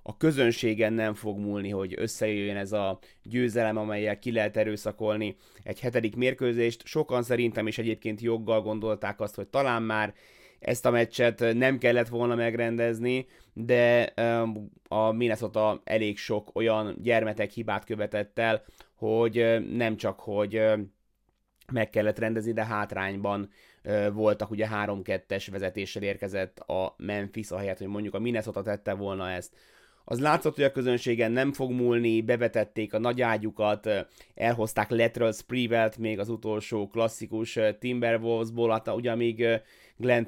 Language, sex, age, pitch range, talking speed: Hungarian, male, 20-39, 105-115 Hz, 135 wpm